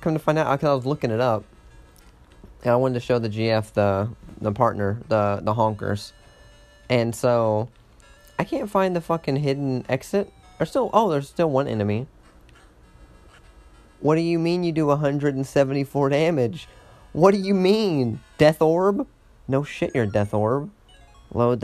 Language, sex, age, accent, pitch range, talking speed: English, male, 30-49, American, 105-145 Hz, 165 wpm